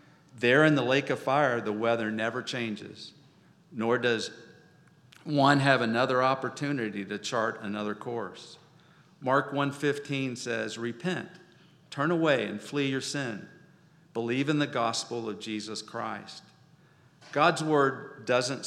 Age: 50-69